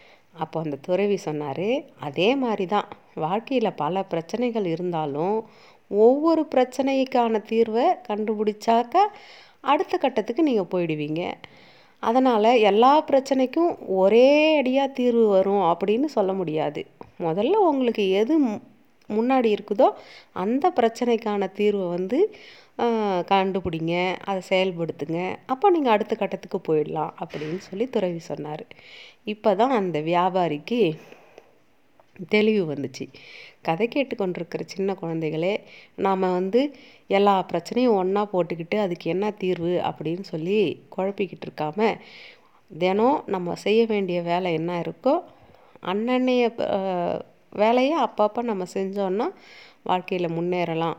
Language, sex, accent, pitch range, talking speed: Tamil, female, native, 175-240 Hz, 100 wpm